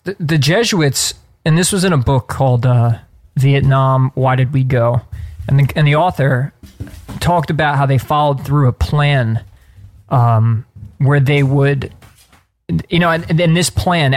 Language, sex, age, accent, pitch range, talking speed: English, male, 20-39, American, 120-150 Hz, 165 wpm